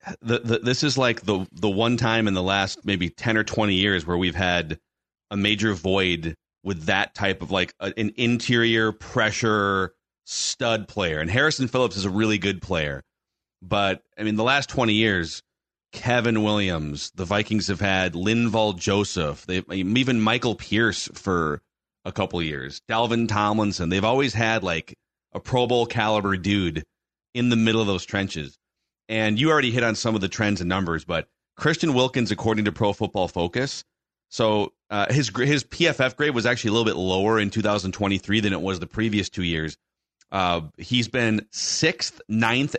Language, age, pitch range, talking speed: English, 30-49, 95-115 Hz, 180 wpm